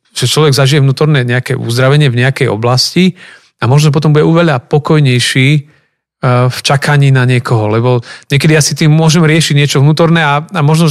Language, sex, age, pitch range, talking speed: Slovak, male, 40-59, 125-160 Hz, 165 wpm